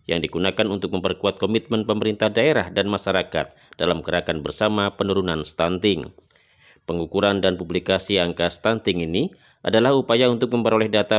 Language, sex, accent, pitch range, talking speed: Indonesian, male, native, 95-115 Hz, 135 wpm